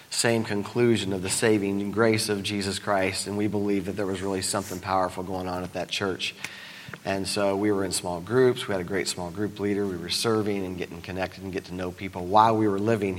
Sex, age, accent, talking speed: male, 40-59, American, 235 wpm